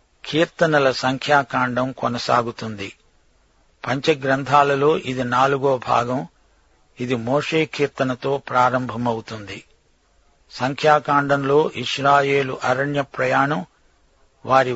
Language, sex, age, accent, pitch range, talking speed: Telugu, male, 50-69, native, 125-145 Hz, 60 wpm